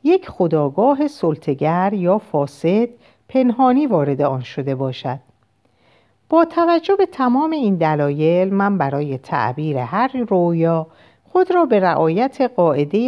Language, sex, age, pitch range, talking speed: Persian, female, 50-69, 145-220 Hz, 120 wpm